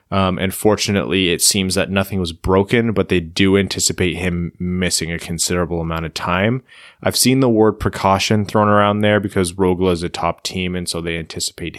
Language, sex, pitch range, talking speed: English, male, 90-105 Hz, 195 wpm